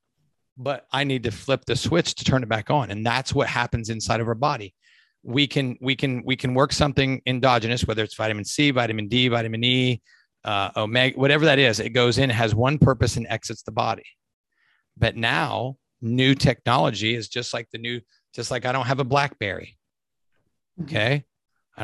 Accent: American